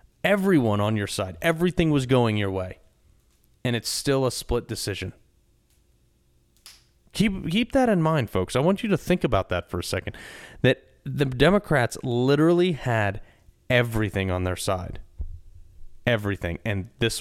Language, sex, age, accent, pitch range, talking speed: English, male, 30-49, American, 100-130 Hz, 150 wpm